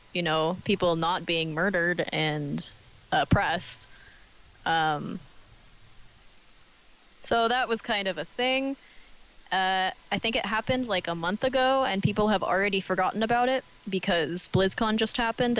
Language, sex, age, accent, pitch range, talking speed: English, female, 20-39, American, 175-235 Hz, 140 wpm